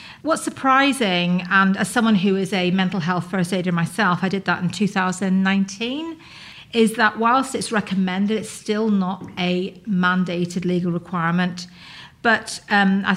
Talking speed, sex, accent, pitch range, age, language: 150 wpm, female, British, 180-215 Hz, 40-59, English